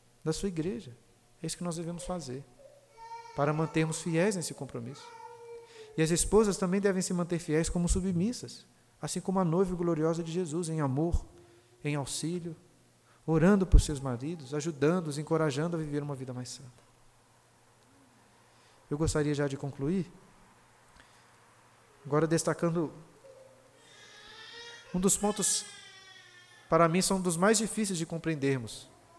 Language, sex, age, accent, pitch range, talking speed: Portuguese, male, 40-59, Brazilian, 145-195 Hz, 135 wpm